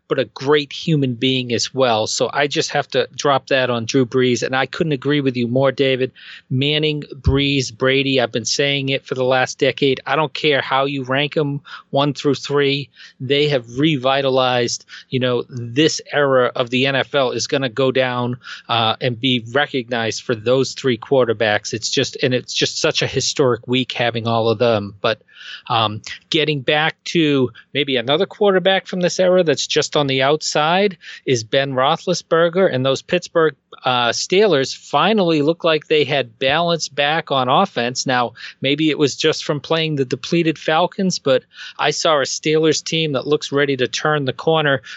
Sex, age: male, 40-59